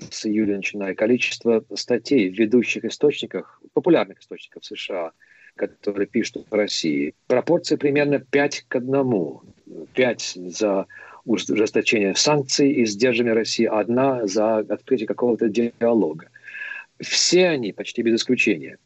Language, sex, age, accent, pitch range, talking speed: Russian, male, 40-59, native, 105-135 Hz, 120 wpm